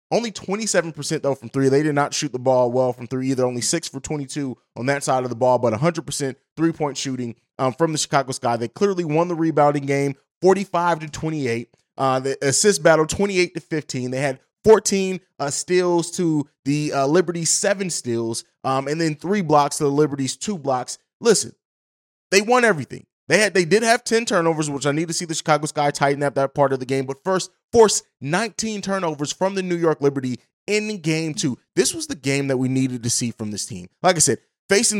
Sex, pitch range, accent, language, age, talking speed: male, 135-175 Hz, American, English, 20-39, 220 wpm